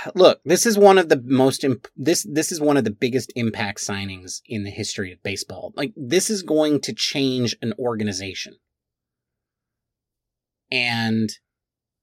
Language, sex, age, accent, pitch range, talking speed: English, male, 30-49, American, 105-150 Hz, 150 wpm